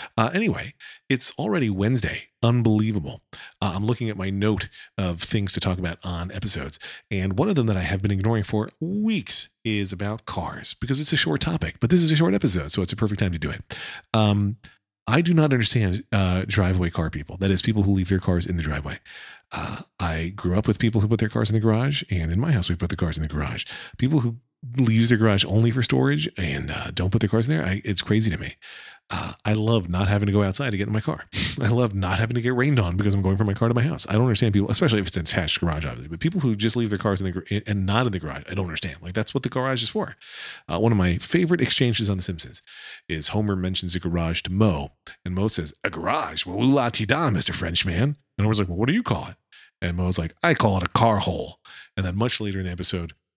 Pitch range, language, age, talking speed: 90-115 Hz, English, 40-59, 260 wpm